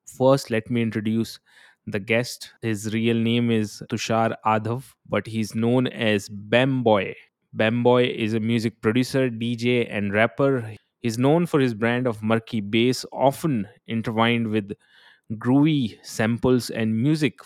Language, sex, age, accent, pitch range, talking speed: Hindi, male, 20-39, native, 105-125 Hz, 140 wpm